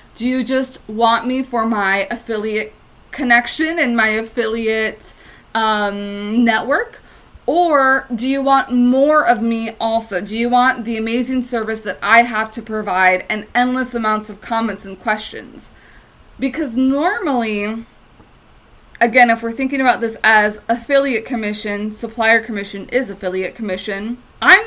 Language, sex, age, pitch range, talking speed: English, female, 20-39, 215-270 Hz, 140 wpm